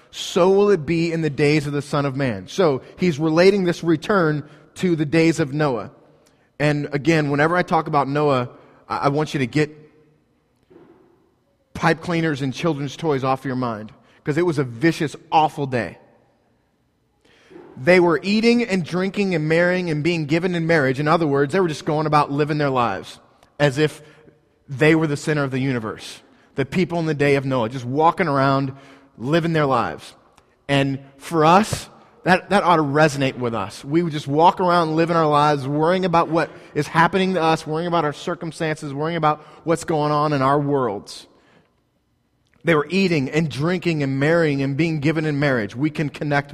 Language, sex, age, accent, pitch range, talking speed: English, male, 30-49, American, 140-165 Hz, 190 wpm